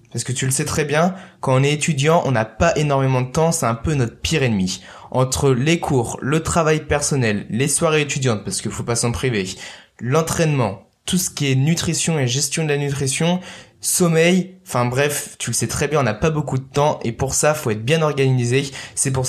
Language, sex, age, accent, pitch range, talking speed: French, male, 20-39, French, 125-165 Hz, 225 wpm